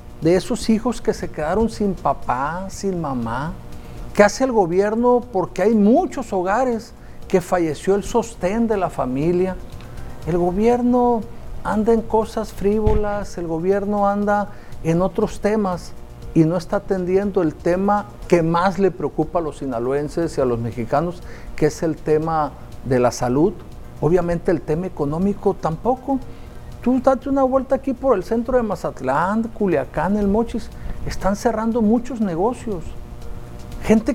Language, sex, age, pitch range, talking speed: Spanish, male, 50-69, 170-230 Hz, 150 wpm